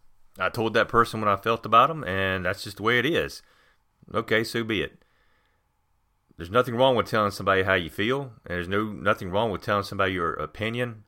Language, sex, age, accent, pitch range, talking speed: English, male, 30-49, American, 95-130 Hz, 205 wpm